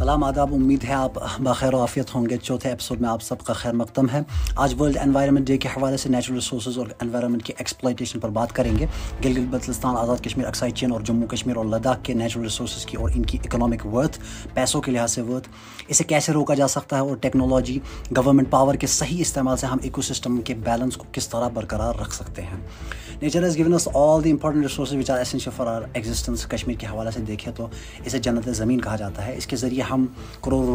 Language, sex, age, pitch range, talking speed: Urdu, male, 30-49, 115-135 Hz, 215 wpm